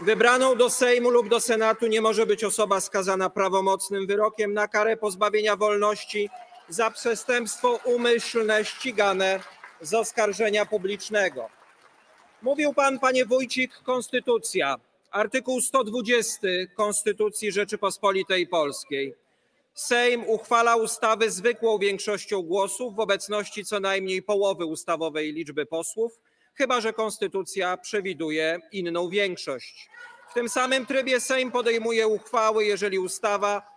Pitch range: 195-245 Hz